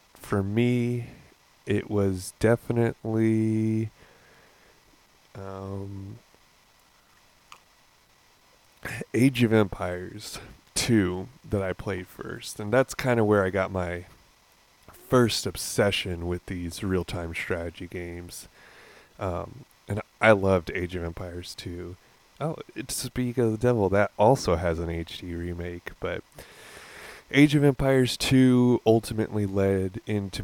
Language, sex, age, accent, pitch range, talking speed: English, male, 20-39, American, 90-110 Hz, 110 wpm